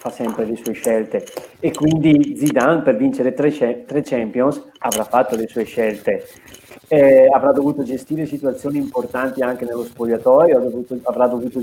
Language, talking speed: Italian, 160 wpm